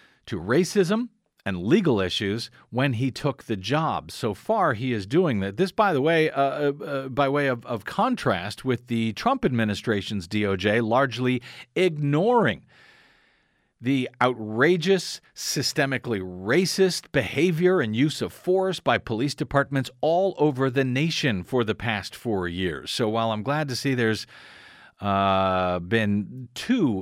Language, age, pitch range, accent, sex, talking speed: English, 50-69, 100-140 Hz, American, male, 145 wpm